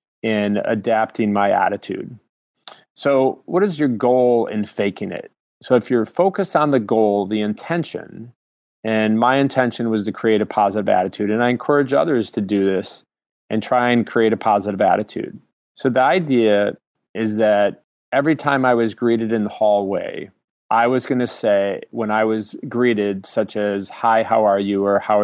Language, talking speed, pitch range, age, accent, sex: English, 175 wpm, 100-120 Hz, 30-49, American, male